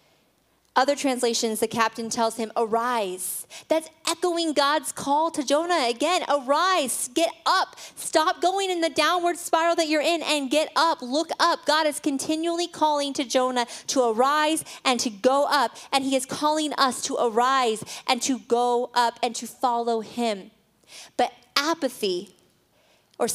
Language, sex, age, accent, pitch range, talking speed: English, female, 30-49, American, 235-300 Hz, 155 wpm